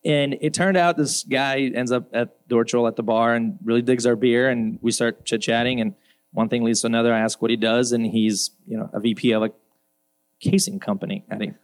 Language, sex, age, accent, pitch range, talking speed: English, male, 30-49, American, 110-130 Hz, 220 wpm